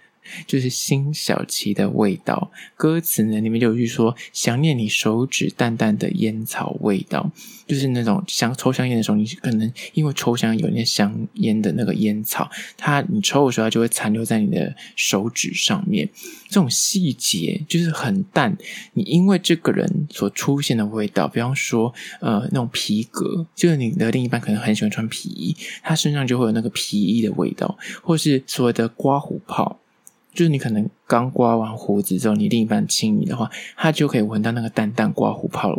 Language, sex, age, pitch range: Chinese, male, 20-39, 115-180 Hz